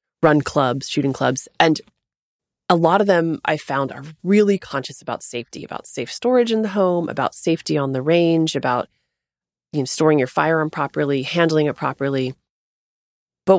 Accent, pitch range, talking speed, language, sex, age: American, 135-185 Hz, 170 wpm, English, female, 30-49